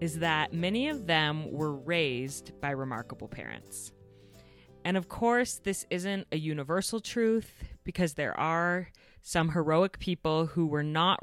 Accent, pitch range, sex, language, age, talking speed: American, 140-175 Hz, female, English, 30-49, 145 wpm